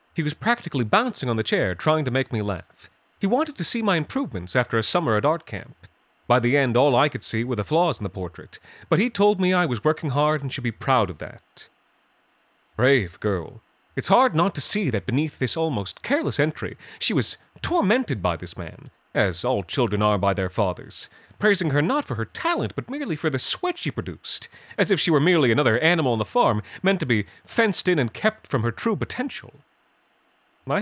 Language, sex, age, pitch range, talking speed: English, male, 30-49, 110-180 Hz, 220 wpm